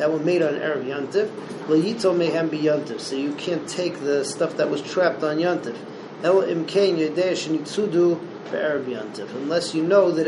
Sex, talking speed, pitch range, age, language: male, 130 wpm, 150-185 Hz, 40-59, English